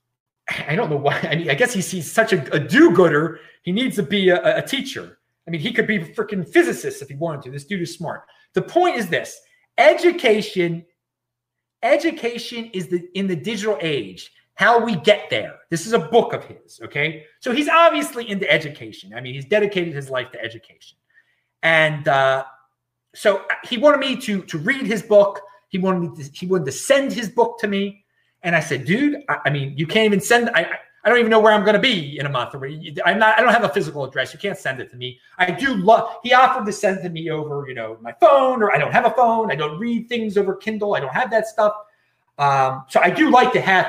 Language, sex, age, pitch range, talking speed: English, male, 30-49, 150-230 Hz, 230 wpm